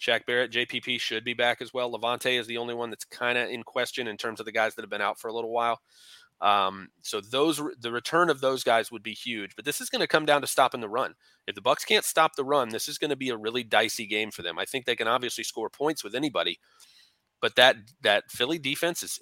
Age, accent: 30-49, American